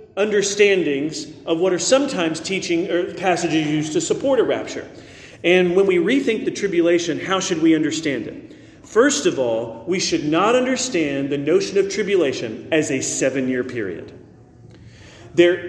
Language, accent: English, American